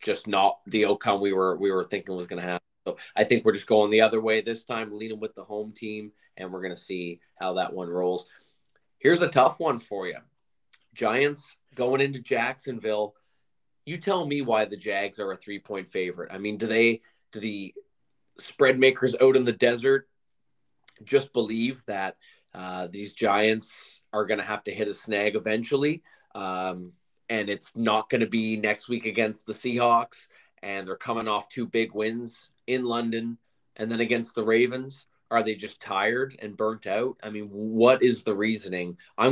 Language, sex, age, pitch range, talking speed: English, male, 20-39, 105-125 Hz, 190 wpm